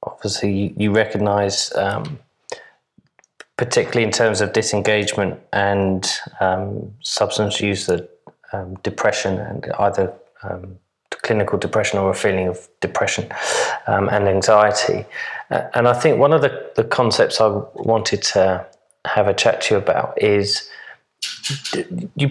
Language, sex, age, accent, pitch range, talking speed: English, male, 20-39, British, 100-115 Hz, 130 wpm